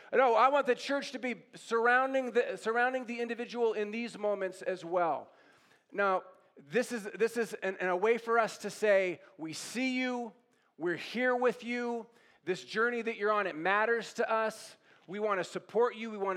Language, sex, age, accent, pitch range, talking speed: English, male, 40-59, American, 165-235 Hz, 195 wpm